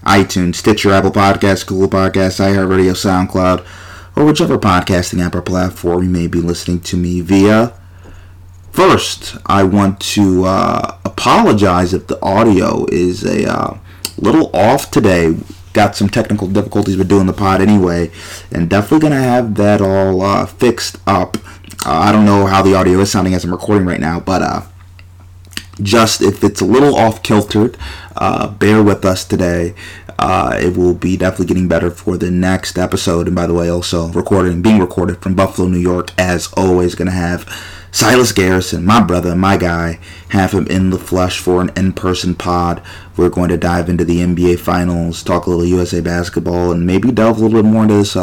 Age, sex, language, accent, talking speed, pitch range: 30-49, male, English, American, 180 wpm, 90-100 Hz